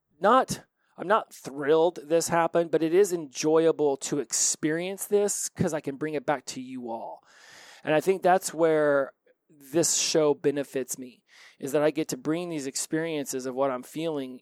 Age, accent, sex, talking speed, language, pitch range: 30-49, American, male, 180 wpm, English, 140-175 Hz